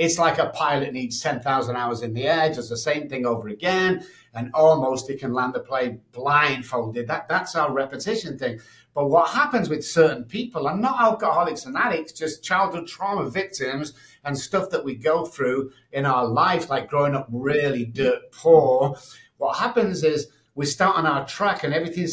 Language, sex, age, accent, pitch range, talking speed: English, male, 50-69, British, 130-185 Hz, 185 wpm